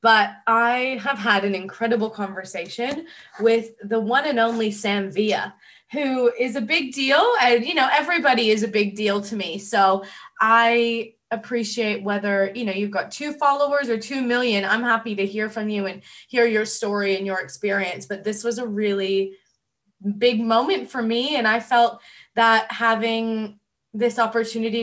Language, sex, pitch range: English, female, 205-240 Hz